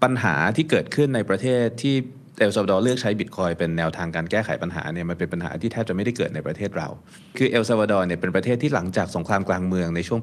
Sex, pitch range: male, 90-125 Hz